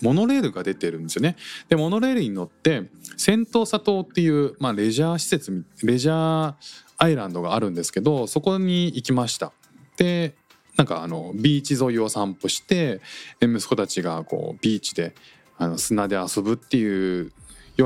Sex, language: male, Japanese